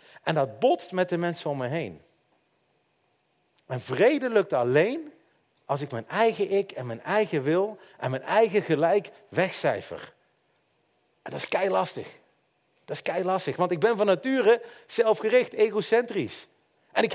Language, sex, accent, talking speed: Dutch, male, Dutch, 150 wpm